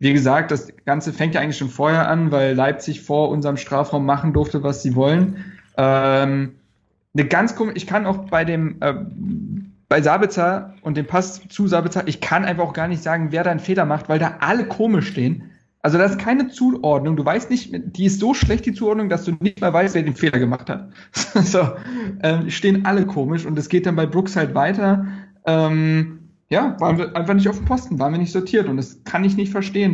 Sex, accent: male, German